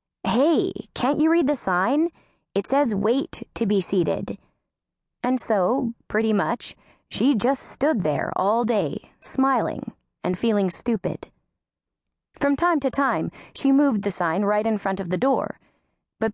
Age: 20-39